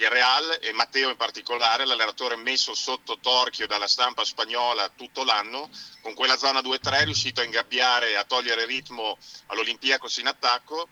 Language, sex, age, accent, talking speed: Italian, male, 40-59, native, 150 wpm